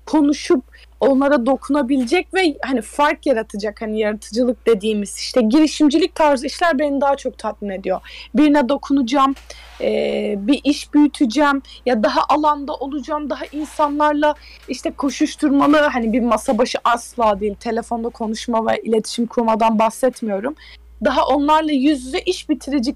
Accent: native